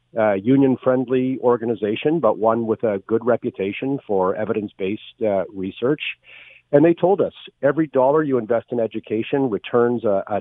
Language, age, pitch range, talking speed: English, 50-69, 105-130 Hz, 145 wpm